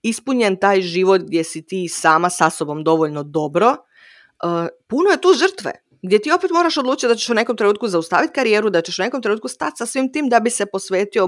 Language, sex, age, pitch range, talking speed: Croatian, female, 30-49, 170-235 Hz, 220 wpm